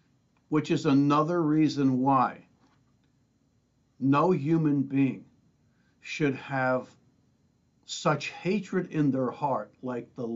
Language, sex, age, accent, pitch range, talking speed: English, male, 60-79, American, 130-165 Hz, 100 wpm